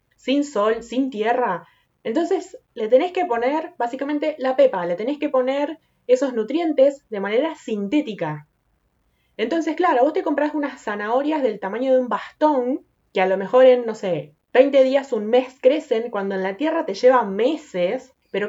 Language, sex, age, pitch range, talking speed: Spanish, female, 20-39, 185-260 Hz, 170 wpm